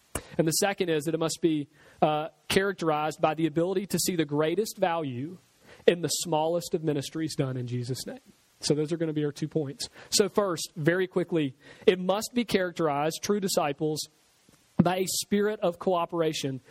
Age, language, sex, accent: 40-59, English, male, American